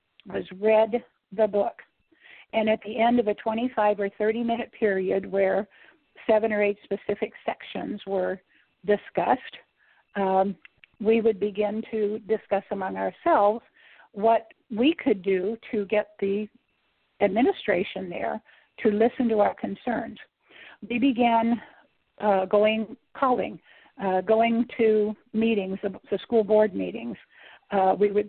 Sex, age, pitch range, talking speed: female, 50-69, 195-225 Hz, 125 wpm